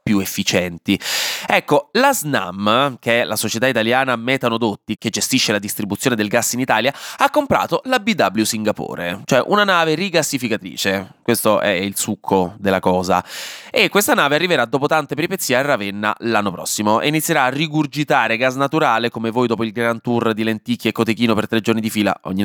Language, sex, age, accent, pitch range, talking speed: Italian, male, 20-39, native, 105-145 Hz, 180 wpm